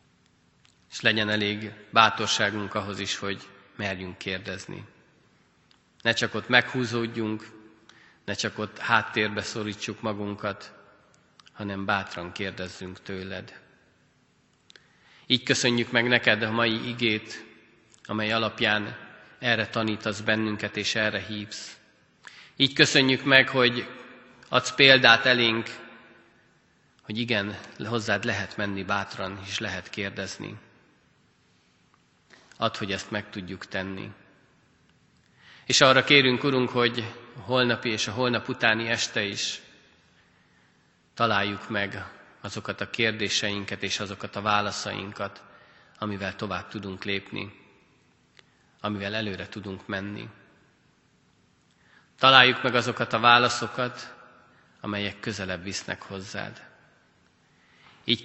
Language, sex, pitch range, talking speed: Hungarian, male, 100-115 Hz, 105 wpm